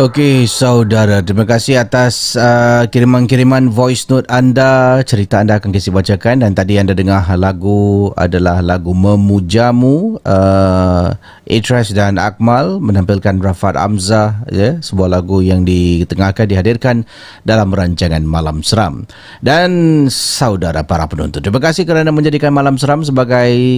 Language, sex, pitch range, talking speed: Malay, male, 95-120 Hz, 130 wpm